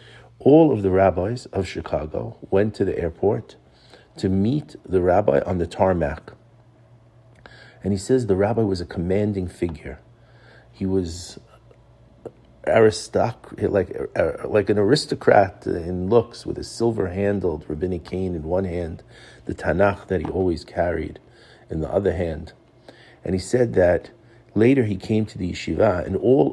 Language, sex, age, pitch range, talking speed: English, male, 50-69, 95-115 Hz, 145 wpm